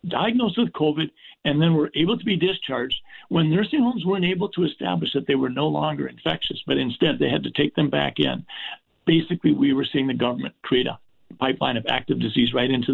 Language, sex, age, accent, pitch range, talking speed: English, male, 50-69, American, 140-175 Hz, 215 wpm